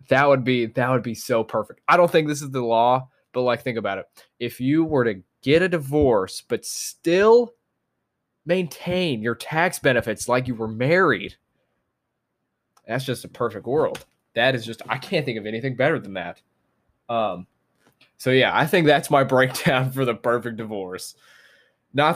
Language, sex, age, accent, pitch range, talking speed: English, male, 20-39, American, 115-150 Hz, 180 wpm